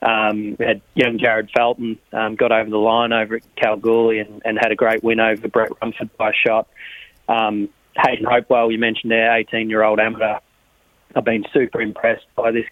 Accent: Australian